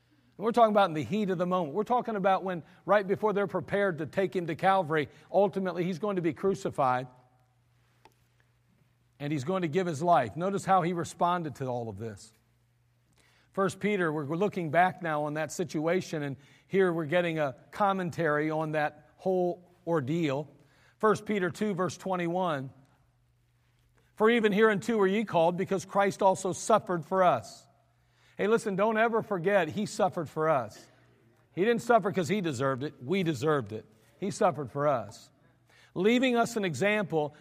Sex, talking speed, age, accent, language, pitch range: male, 170 wpm, 50-69, American, English, 150-205 Hz